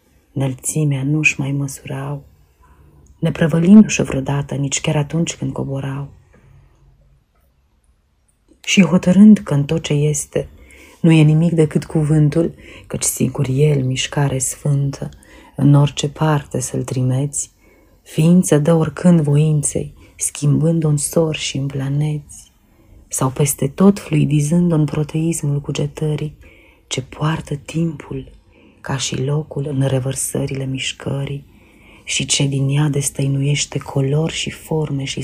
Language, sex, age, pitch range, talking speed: Romanian, female, 30-49, 135-155 Hz, 120 wpm